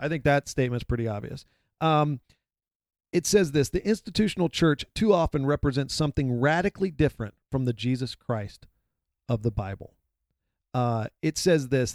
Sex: male